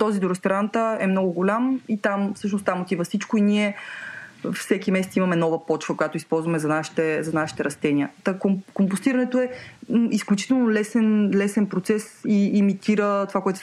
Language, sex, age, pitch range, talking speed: Bulgarian, female, 20-39, 165-205 Hz, 170 wpm